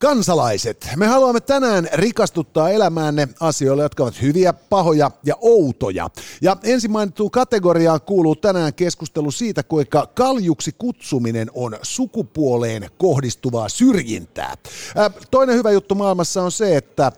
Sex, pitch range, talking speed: male, 140-210 Hz, 120 wpm